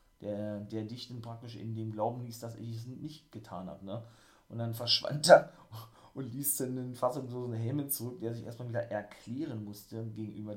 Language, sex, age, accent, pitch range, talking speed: German, male, 30-49, German, 105-125 Hz, 210 wpm